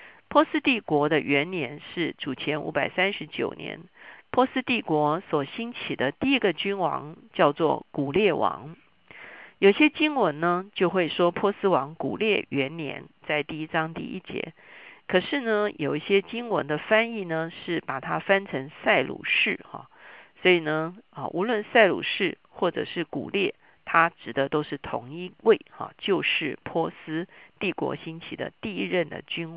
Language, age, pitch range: Chinese, 50-69, 155-215 Hz